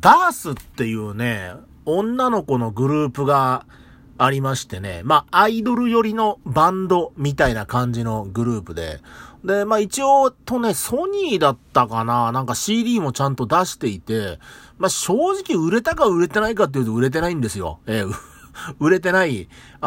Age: 40-59